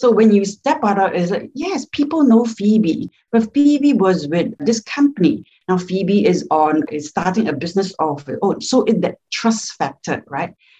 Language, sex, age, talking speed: English, female, 60-79, 190 wpm